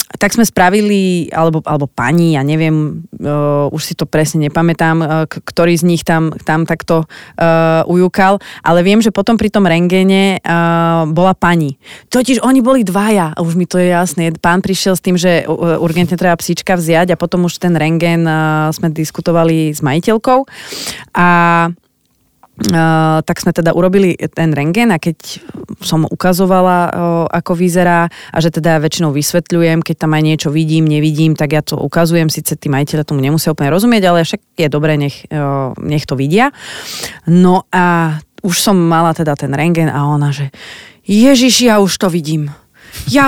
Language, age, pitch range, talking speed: Slovak, 30-49, 160-190 Hz, 175 wpm